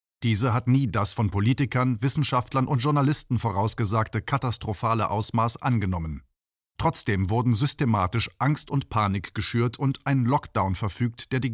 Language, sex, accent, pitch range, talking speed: German, male, German, 105-130 Hz, 135 wpm